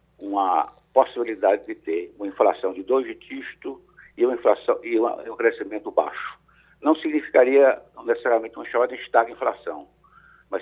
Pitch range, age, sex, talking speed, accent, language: 340-445 Hz, 60-79, male, 145 wpm, Brazilian, Portuguese